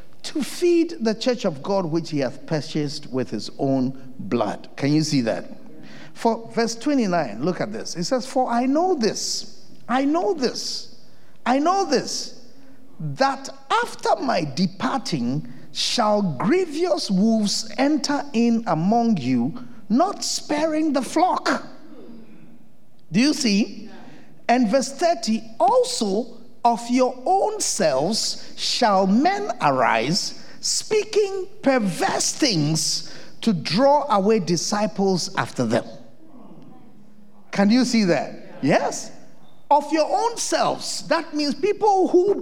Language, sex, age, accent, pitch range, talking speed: English, male, 50-69, South African, 205-300 Hz, 125 wpm